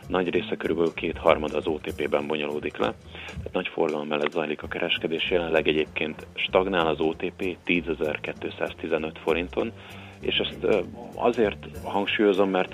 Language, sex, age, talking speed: Hungarian, male, 30-49, 125 wpm